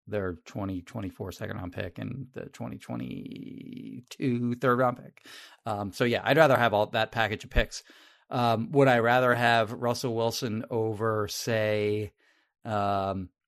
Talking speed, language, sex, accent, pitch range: 145 wpm, English, male, American, 105-125 Hz